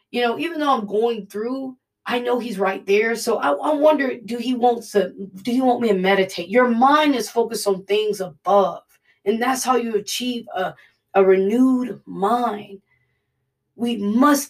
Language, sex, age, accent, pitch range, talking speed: English, female, 20-39, American, 165-225 Hz, 170 wpm